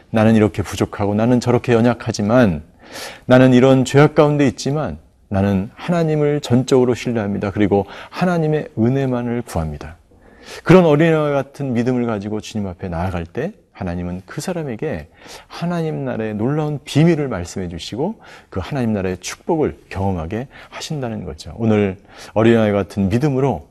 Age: 40-59